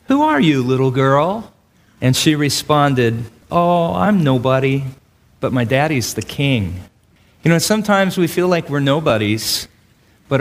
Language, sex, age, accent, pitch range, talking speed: English, male, 40-59, American, 115-155 Hz, 145 wpm